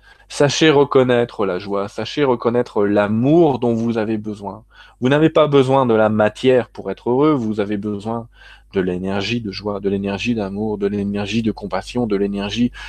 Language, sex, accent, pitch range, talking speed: French, male, French, 105-125 Hz, 170 wpm